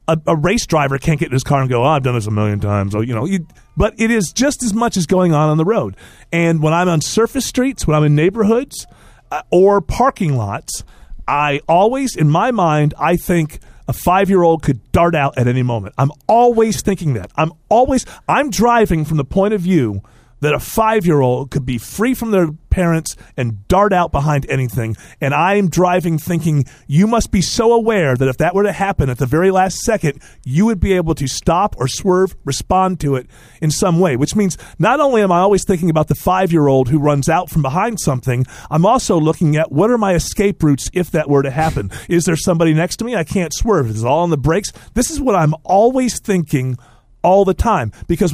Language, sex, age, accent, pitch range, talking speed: English, male, 40-59, American, 140-195 Hz, 230 wpm